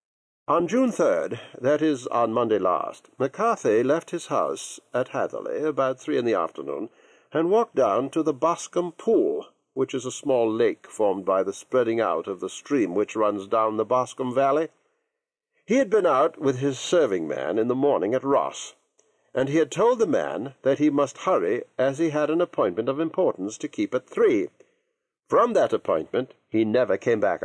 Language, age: English, 60-79